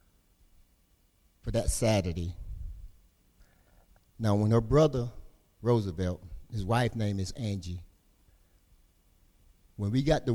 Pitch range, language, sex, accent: 90-110 Hz, English, male, American